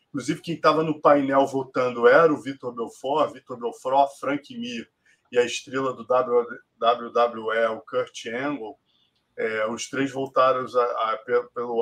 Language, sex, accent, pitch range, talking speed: Portuguese, male, Brazilian, 125-155 Hz, 145 wpm